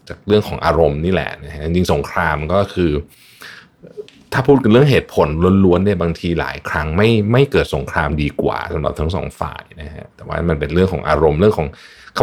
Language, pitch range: Thai, 80-110 Hz